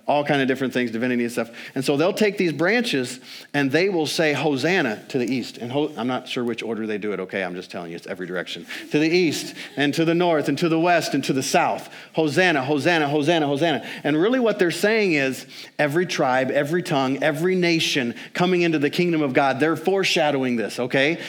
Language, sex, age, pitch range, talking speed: English, male, 40-59, 140-175 Hz, 225 wpm